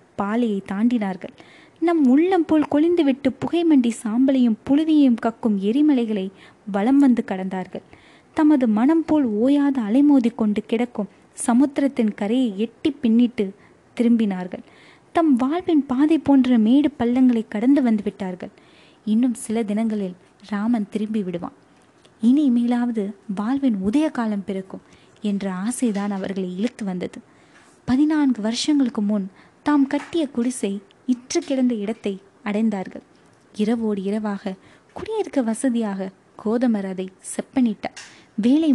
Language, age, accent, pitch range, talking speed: Tamil, 20-39, native, 205-265 Hz, 105 wpm